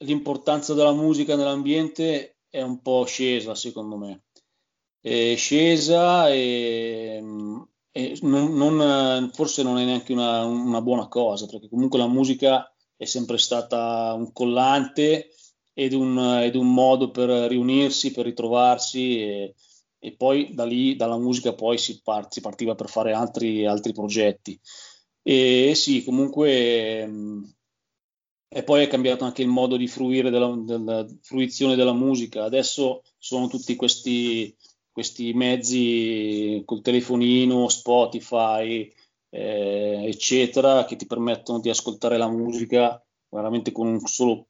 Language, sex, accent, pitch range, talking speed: Italian, male, native, 115-130 Hz, 125 wpm